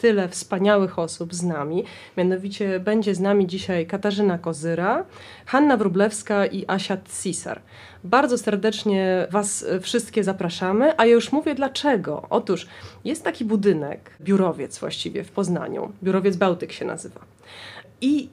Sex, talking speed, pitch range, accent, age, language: female, 130 wpm, 185-225 Hz, native, 30-49, Polish